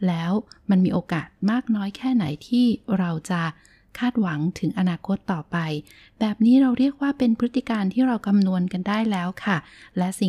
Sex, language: female, Thai